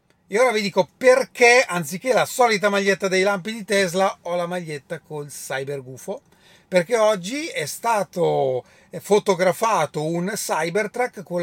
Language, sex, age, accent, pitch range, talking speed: Italian, male, 30-49, native, 170-220 Hz, 140 wpm